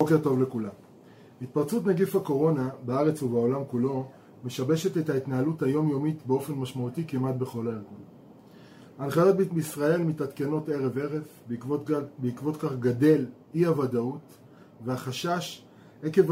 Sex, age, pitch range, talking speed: male, 20-39, 130-160 Hz, 120 wpm